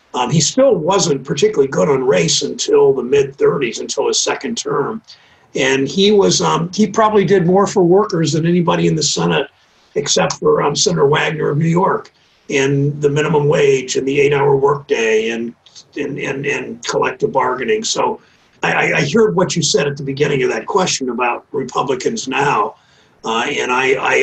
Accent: American